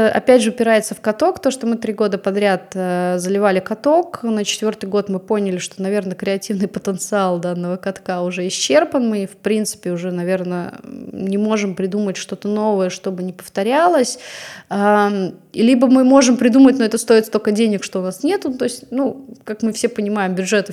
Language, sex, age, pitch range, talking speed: Russian, female, 20-39, 190-240 Hz, 175 wpm